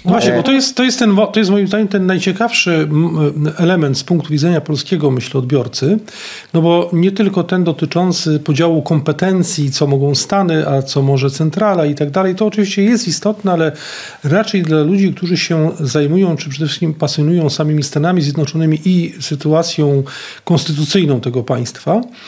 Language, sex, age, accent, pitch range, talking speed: Polish, male, 40-59, native, 155-200 Hz, 165 wpm